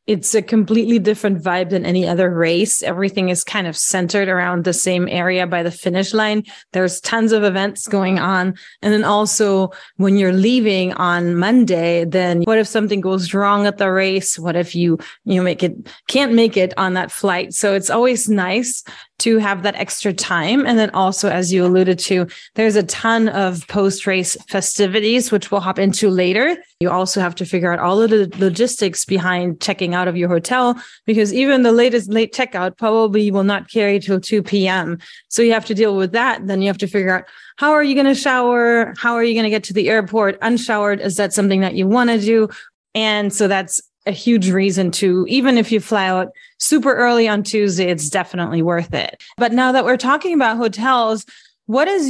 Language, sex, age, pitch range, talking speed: English, female, 30-49, 185-225 Hz, 205 wpm